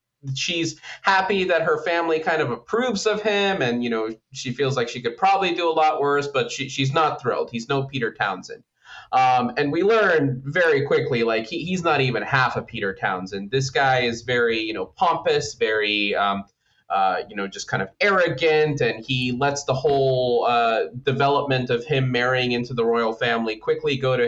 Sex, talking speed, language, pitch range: male, 200 wpm, English, 115-155 Hz